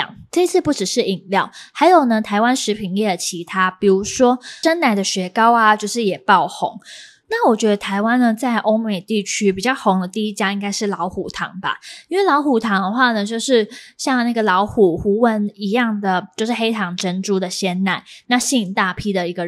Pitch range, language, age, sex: 195-245 Hz, Chinese, 20-39, female